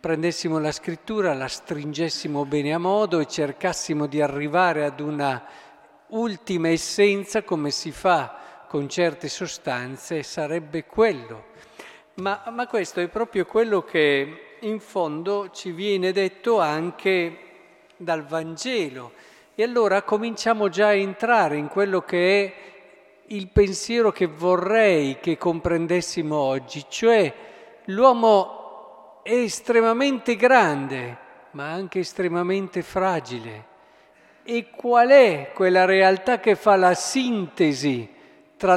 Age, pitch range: 50-69, 155-215 Hz